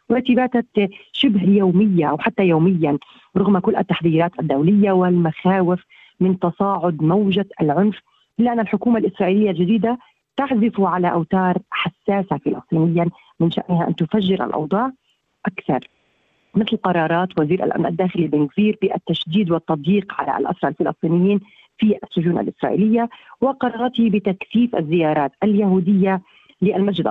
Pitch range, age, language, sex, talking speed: 175-215 Hz, 40-59, Arabic, female, 110 wpm